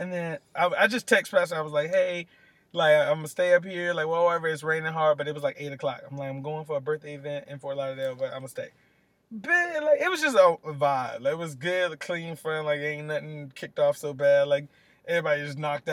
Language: English